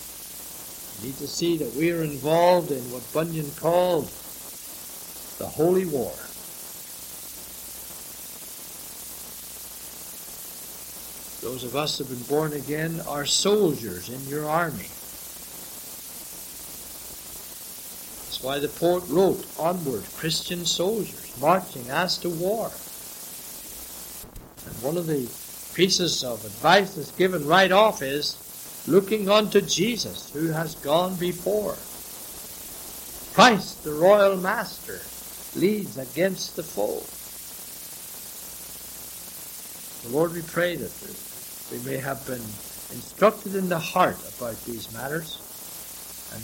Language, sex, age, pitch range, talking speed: English, male, 60-79, 135-185 Hz, 105 wpm